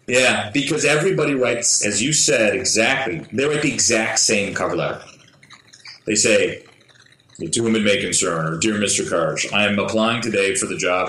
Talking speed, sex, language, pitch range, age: 180 wpm, male, English, 105-135 Hz, 30-49